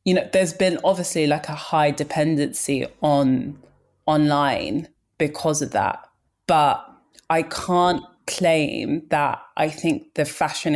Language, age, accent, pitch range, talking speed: English, 20-39, British, 140-165 Hz, 130 wpm